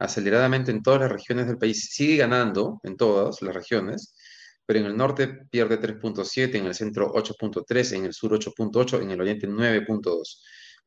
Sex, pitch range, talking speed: male, 110-135 Hz, 170 wpm